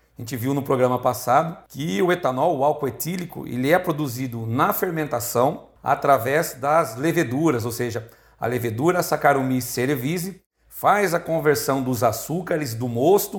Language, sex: Portuguese, male